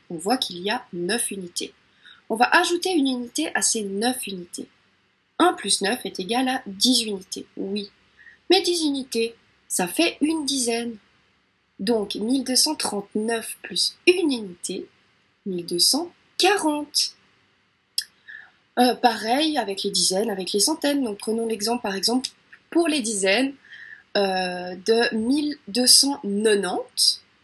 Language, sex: French, female